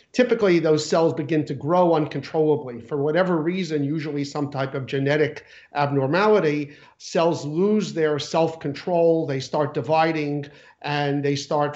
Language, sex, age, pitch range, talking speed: English, male, 50-69, 140-170 Hz, 135 wpm